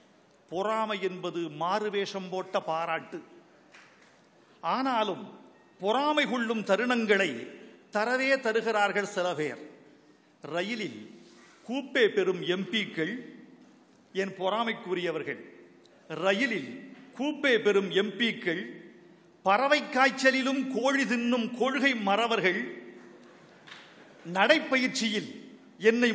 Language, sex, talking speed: Tamil, male, 70 wpm